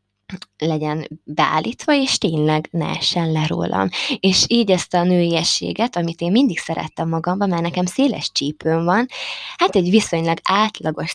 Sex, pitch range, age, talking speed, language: female, 160-195 Hz, 20-39, 145 wpm, Hungarian